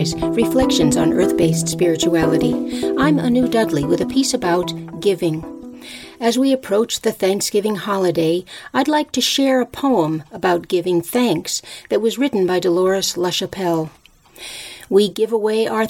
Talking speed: 145 wpm